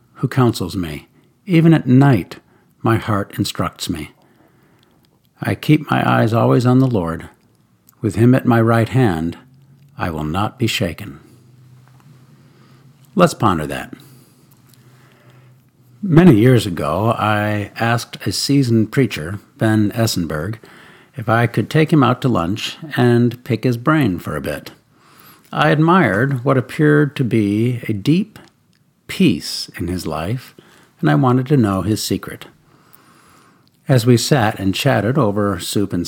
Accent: American